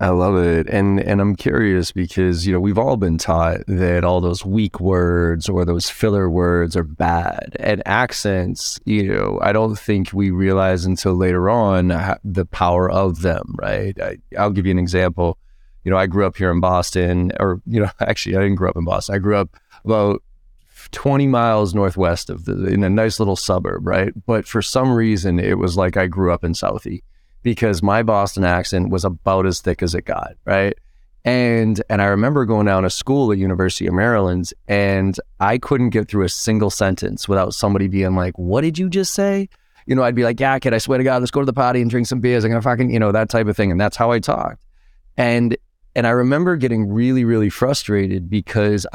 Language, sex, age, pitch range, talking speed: English, male, 30-49, 90-110 Hz, 220 wpm